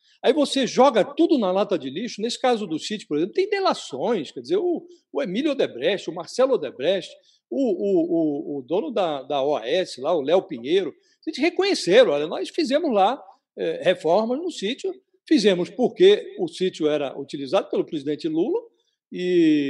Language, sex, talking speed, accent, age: Portuguese, male, 175 wpm, Brazilian, 60-79